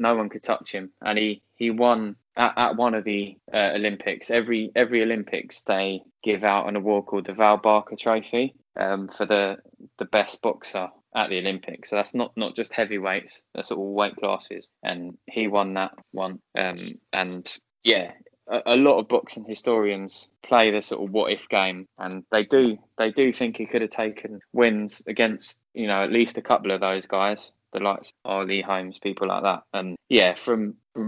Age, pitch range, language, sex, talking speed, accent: 10-29, 95-110 Hz, English, male, 195 wpm, British